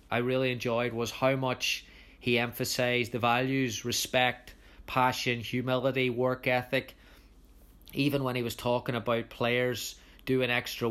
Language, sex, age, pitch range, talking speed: English, male, 30-49, 115-130 Hz, 130 wpm